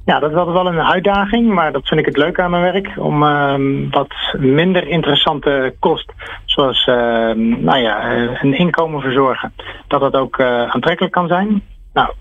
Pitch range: 125-160 Hz